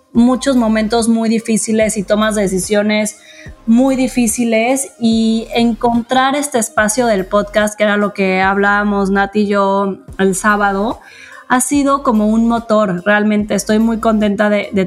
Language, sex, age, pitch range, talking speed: Spanish, female, 20-39, 205-240 Hz, 145 wpm